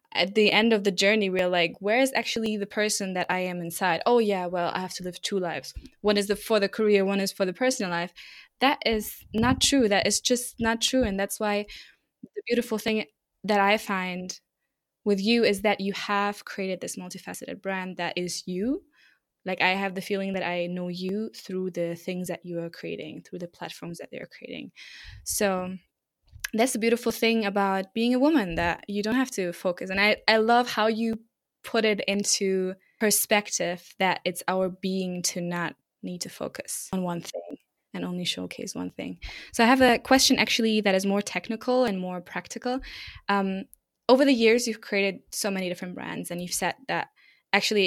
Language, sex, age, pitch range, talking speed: English, female, 20-39, 180-225 Hz, 200 wpm